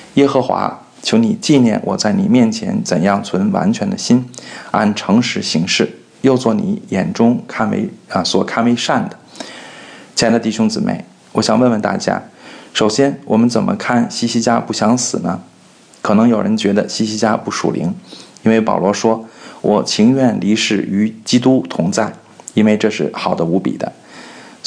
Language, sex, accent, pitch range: Chinese, male, native, 110-130 Hz